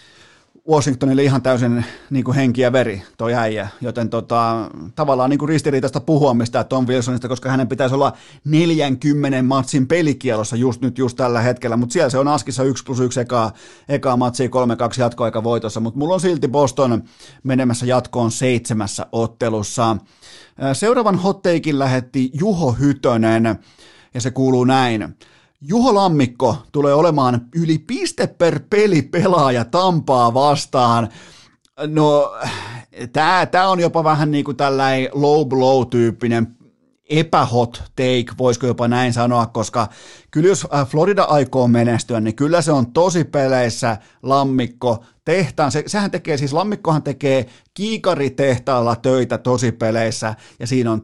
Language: Finnish